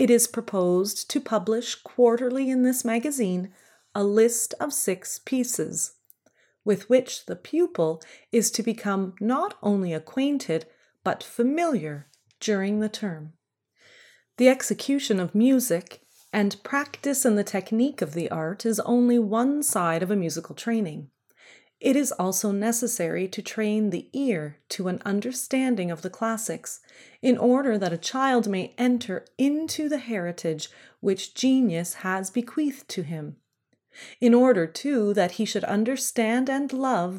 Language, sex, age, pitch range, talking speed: English, female, 30-49, 185-250 Hz, 140 wpm